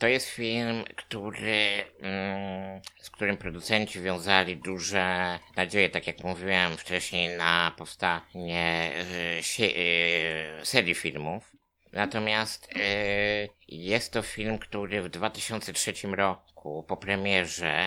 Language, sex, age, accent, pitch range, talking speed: Polish, male, 50-69, native, 85-100 Hz, 95 wpm